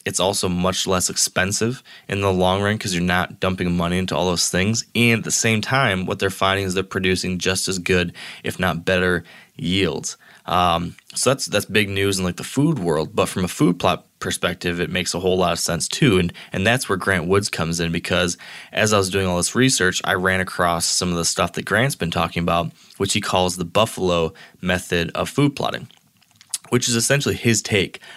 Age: 20-39